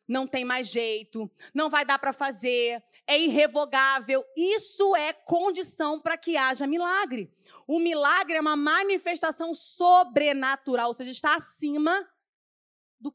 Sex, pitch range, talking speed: female, 215-305 Hz, 130 wpm